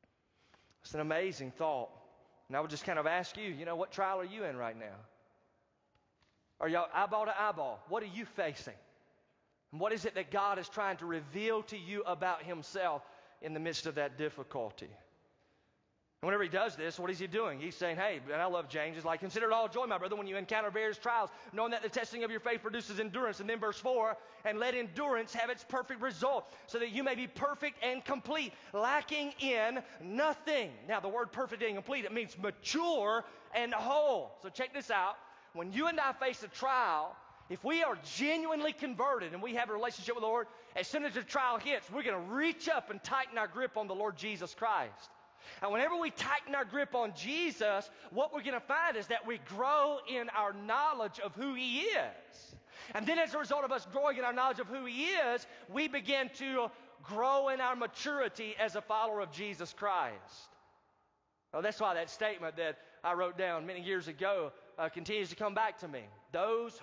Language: English